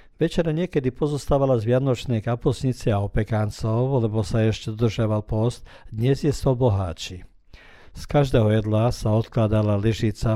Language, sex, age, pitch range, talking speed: Croatian, male, 50-69, 105-125 Hz, 135 wpm